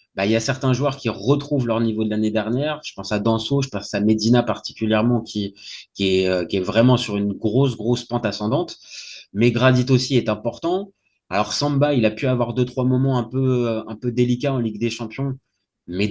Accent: French